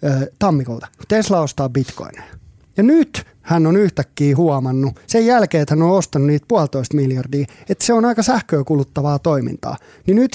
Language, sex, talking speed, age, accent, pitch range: Finnish, male, 160 wpm, 30-49, native, 140-195 Hz